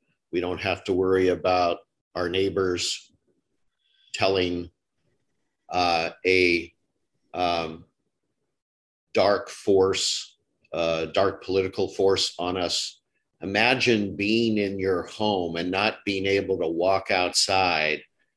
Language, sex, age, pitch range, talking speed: English, male, 50-69, 85-100 Hz, 105 wpm